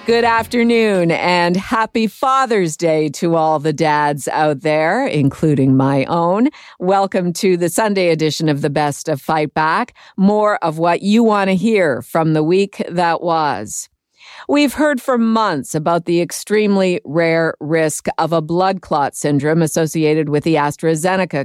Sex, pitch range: female, 155-210 Hz